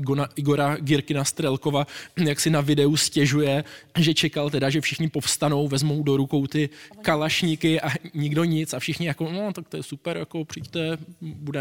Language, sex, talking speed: Czech, male, 175 wpm